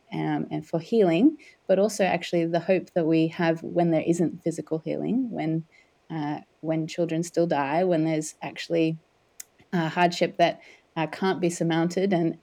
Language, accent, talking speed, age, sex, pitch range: English, Australian, 160 wpm, 30-49, female, 160-185 Hz